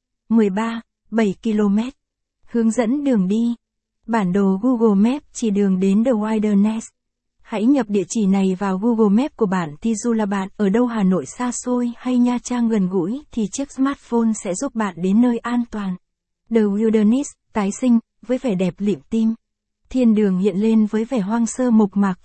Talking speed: 190 wpm